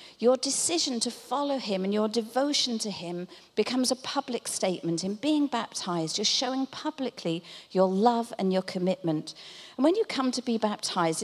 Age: 50-69